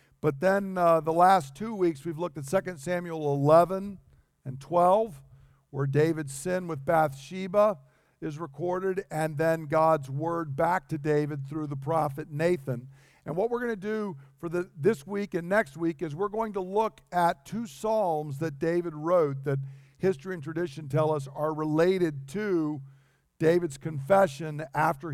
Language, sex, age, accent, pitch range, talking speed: English, male, 50-69, American, 140-175 Hz, 160 wpm